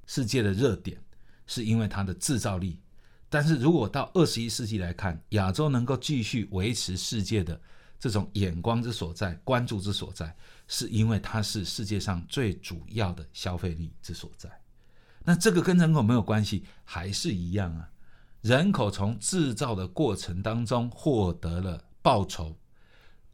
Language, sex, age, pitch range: Chinese, male, 50-69, 90-115 Hz